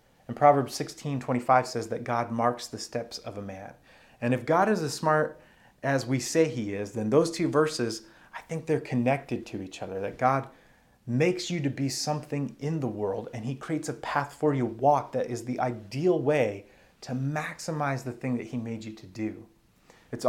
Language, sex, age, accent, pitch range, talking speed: English, male, 30-49, American, 120-150 Hz, 205 wpm